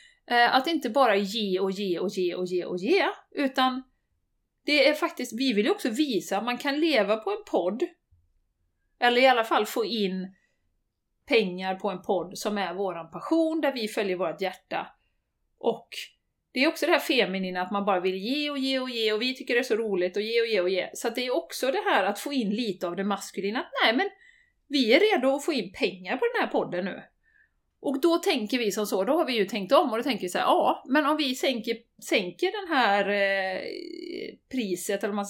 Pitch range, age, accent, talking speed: 190-280 Hz, 30-49, native, 230 wpm